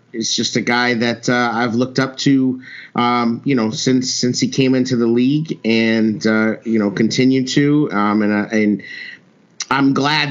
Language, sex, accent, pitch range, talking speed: English, male, American, 110-130 Hz, 185 wpm